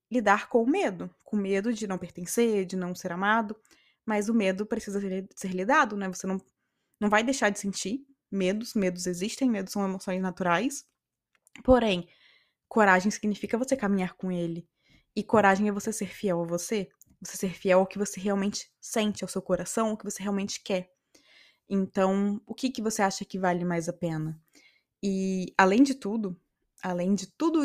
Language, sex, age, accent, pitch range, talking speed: Portuguese, female, 20-39, Brazilian, 185-225 Hz, 180 wpm